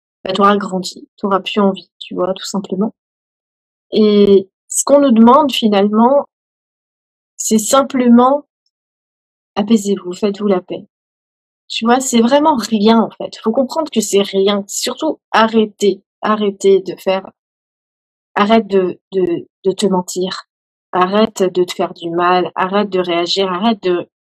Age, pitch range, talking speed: 30-49, 185-235 Hz, 145 wpm